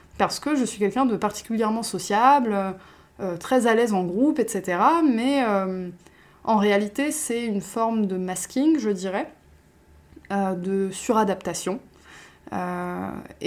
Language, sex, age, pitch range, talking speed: French, female, 20-39, 195-255 Hz, 135 wpm